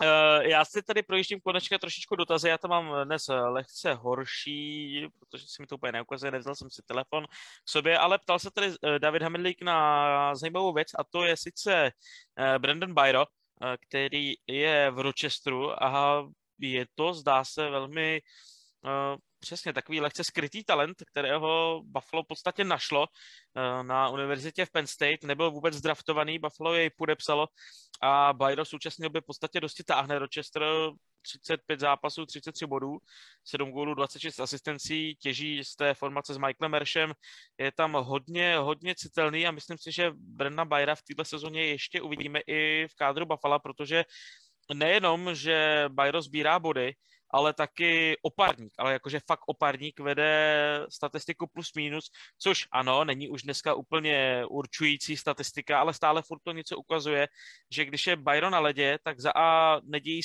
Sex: male